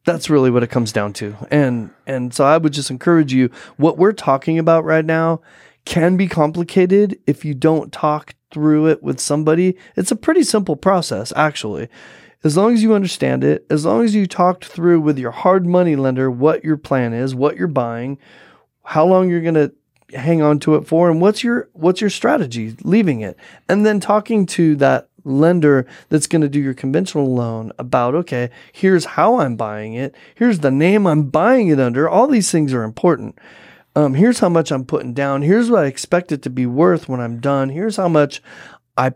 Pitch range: 130-175 Hz